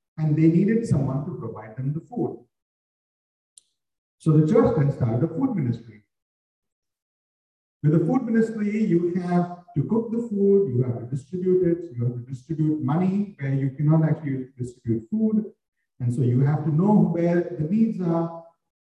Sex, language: male, English